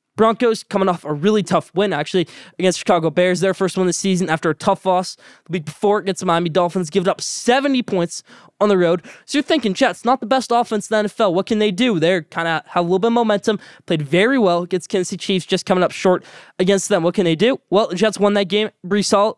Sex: male